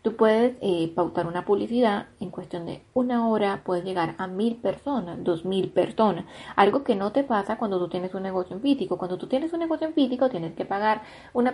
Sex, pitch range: female, 180-230 Hz